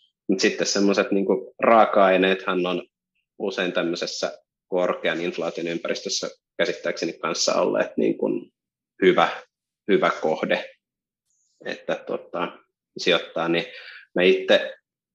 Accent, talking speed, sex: native, 85 wpm, male